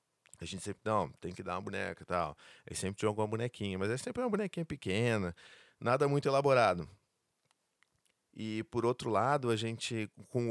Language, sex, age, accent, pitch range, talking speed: Portuguese, male, 20-39, Brazilian, 105-145 Hz, 185 wpm